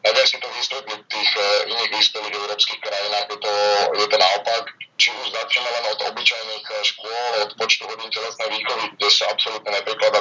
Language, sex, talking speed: Slovak, male, 180 wpm